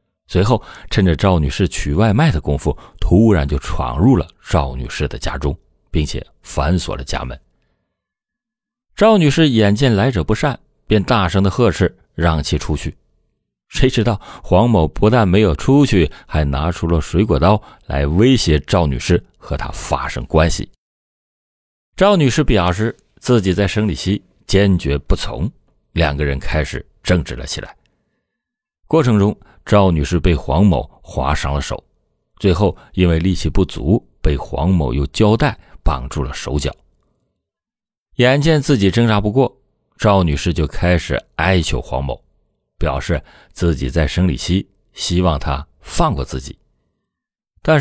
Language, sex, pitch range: Chinese, male, 75-105 Hz